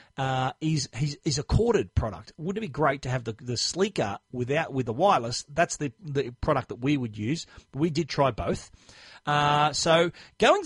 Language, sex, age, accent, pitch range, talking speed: English, male, 40-59, Australian, 140-175 Hz, 205 wpm